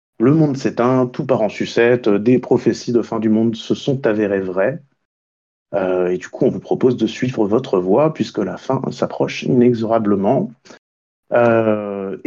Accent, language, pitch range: French, French, 110-140 Hz